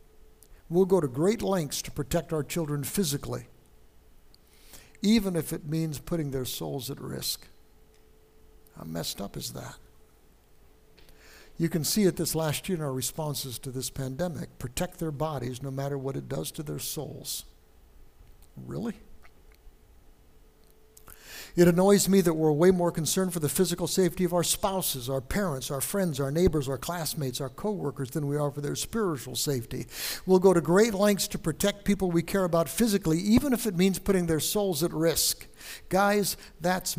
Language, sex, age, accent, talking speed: English, male, 60-79, American, 170 wpm